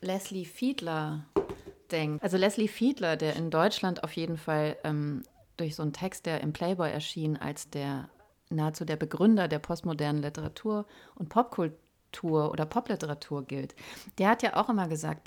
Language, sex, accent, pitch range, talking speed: German, female, German, 155-200 Hz, 155 wpm